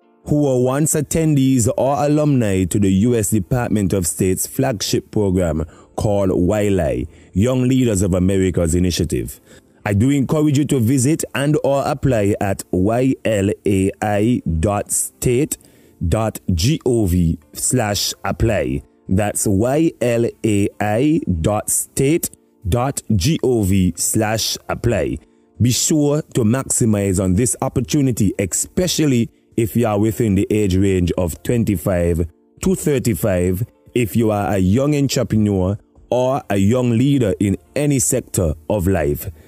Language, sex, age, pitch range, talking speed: English, male, 30-49, 95-130 Hz, 105 wpm